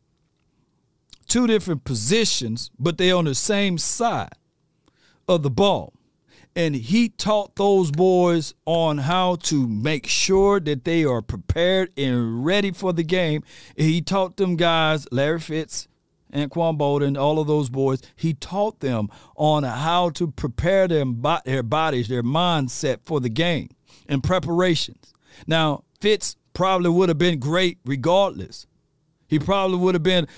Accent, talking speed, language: American, 150 wpm, English